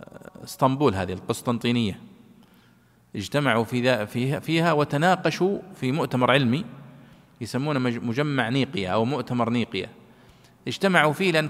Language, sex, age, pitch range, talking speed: Arabic, male, 40-59, 115-155 Hz, 100 wpm